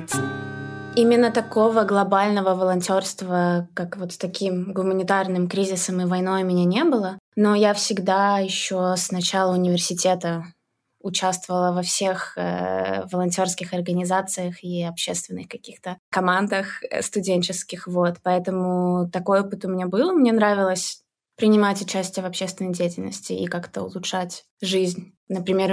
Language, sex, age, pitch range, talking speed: Russian, female, 20-39, 180-200 Hz, 125 wpm